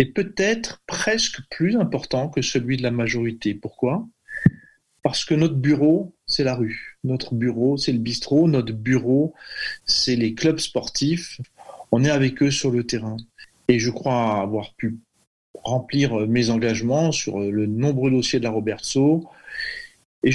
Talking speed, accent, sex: 155 wpm, French, male